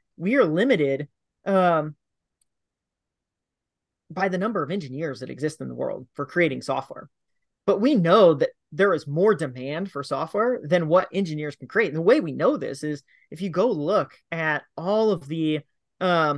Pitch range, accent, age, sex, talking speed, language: 145-200 Hz, American, 30-49, male, 175 wpm, English